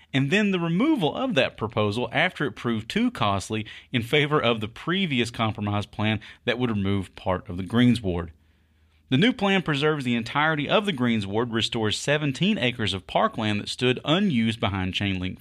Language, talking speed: English, 175 wpm